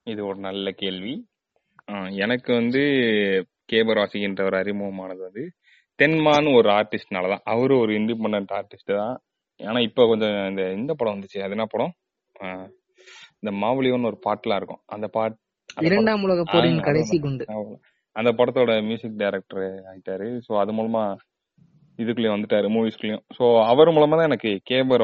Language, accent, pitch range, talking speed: Tamil, native, 100-135 Hz, 130 wpm